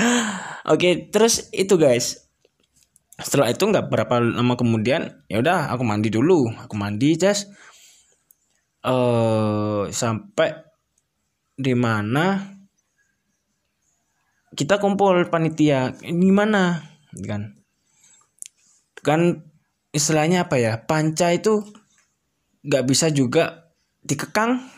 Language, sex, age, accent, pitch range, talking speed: Indonesian, male, 20-39, native, 120-170 Hz, 90 wpm